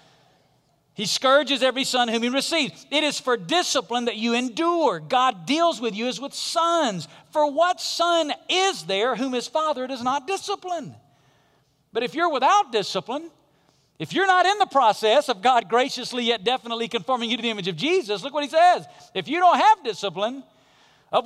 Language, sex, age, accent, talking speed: English, male, 50-69, American, 185 wpm